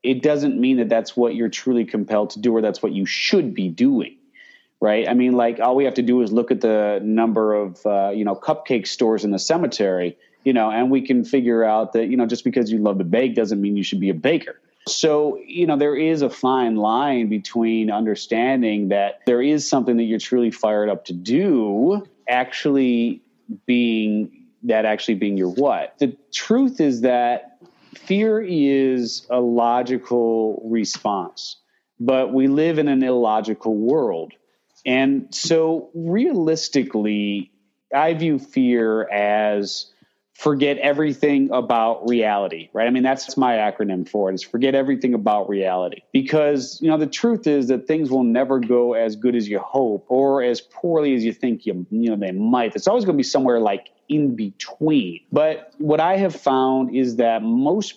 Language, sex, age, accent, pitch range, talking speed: English, male, 30-49, American, 110-140 Hz, 180 wpm